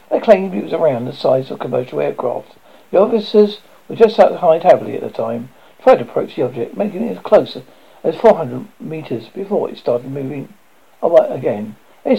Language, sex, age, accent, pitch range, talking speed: English, male, 60-79, British, 130-215 Hz, 180 wpm